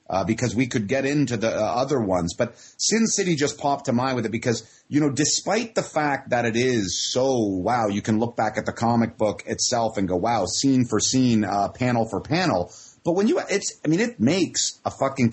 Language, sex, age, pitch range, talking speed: English, male, 30-49, 110-145 Hz, 230 wpm